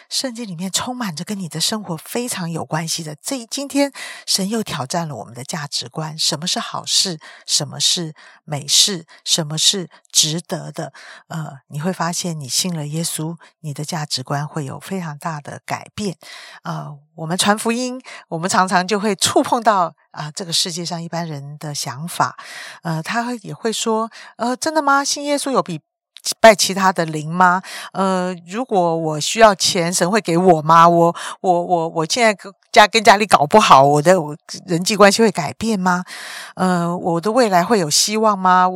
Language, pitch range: Chinese, 160-215 Hz